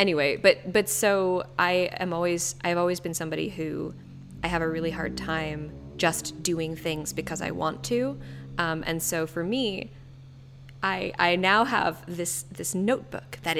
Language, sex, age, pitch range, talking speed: English, female, 10-29, 145-190 Hz, 170 wpm